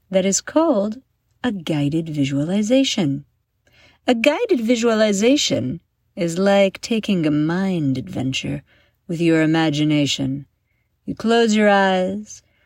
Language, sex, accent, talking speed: English, female, American, 105 wpm